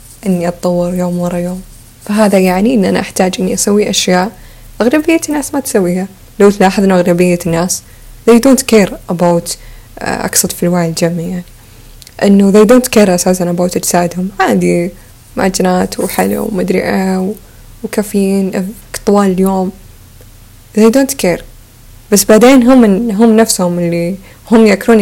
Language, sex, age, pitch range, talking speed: Arabic, female, 20-39, 175-220 Hz, 135 wpm